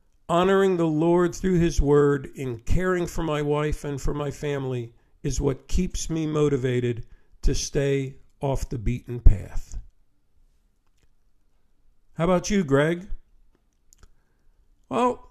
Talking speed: 120 wpm